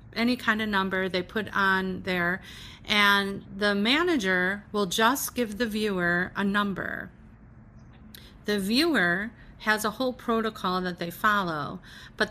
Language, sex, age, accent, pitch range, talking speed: English, female, 40-59, American, 185-225 Hz, 135 wpm